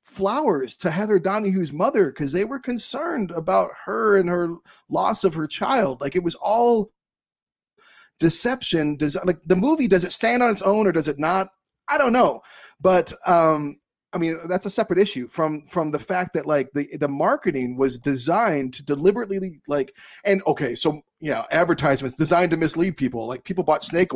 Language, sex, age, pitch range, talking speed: English, male, 30-49, 145-195 Hz, 185 wpm